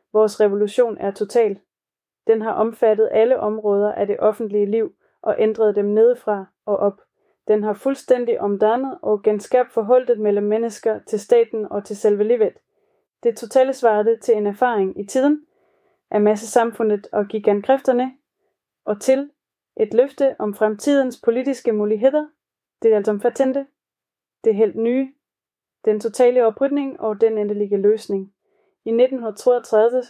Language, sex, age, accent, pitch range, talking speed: Danish, female, 20-39, native, 210-250 Hz, 140 wpm